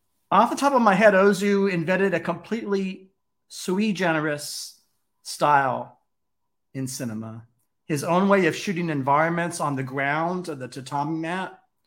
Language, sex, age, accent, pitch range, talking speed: English, male, 50-69, American, 155-190 Hz, 140 wpm